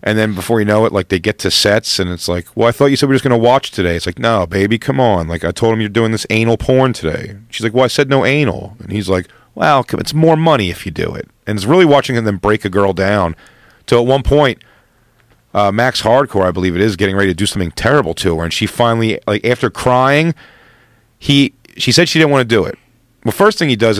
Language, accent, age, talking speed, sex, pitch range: English, American, 40-59, 280 wpm, male, 100-125 Hz